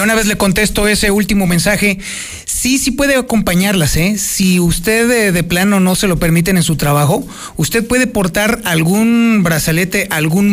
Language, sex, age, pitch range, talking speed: Spanish, male, 40-59, 160-205 Hz, 170 wpm